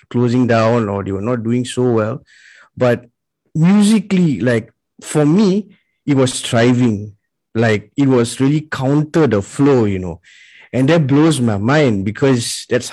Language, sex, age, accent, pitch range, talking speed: English, male, 20-39, Indian, 110-145 Hz, 155 wpm